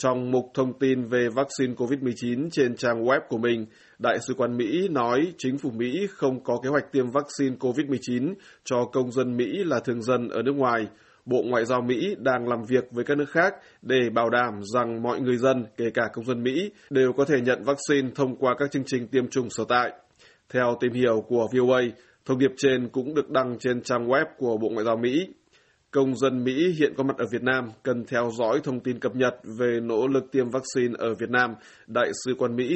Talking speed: 220 wpm